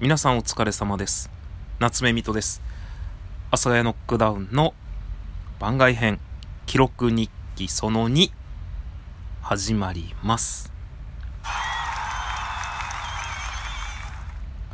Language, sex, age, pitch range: Japanese, male, 20-39, 90-125 Hz